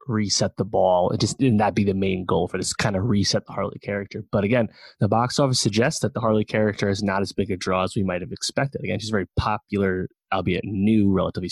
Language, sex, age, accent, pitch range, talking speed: English, male, 20-39, American, 95-105 Hz, 250 wpm